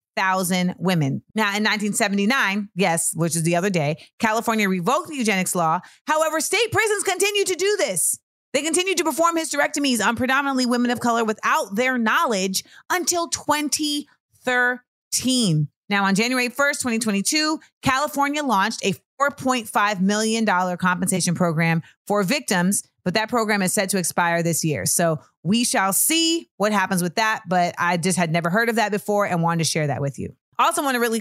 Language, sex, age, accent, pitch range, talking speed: English, female, 30-49, American, 190-280 Hz, 170 wpm